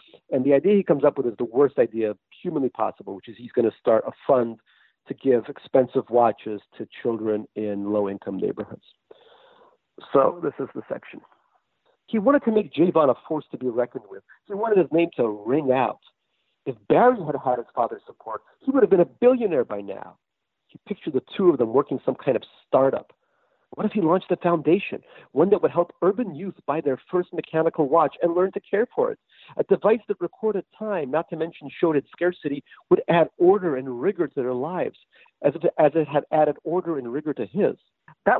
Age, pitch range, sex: 50-69, 135-205 Hz, male